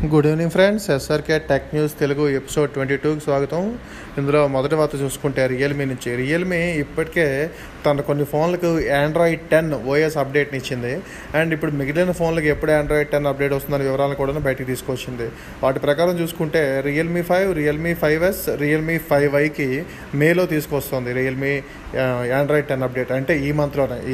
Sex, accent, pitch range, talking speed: male, native, 140-170 Hz, 150 wpm